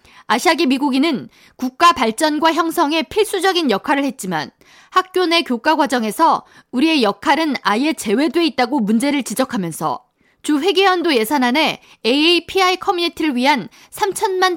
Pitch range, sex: 255-335 Hz, female